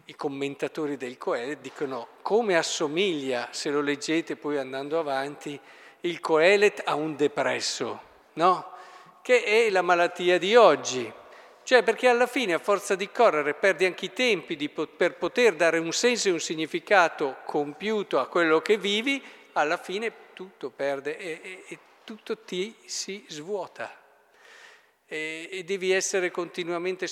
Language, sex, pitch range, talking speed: Italian, male, 145-195 Hz, 145 wpm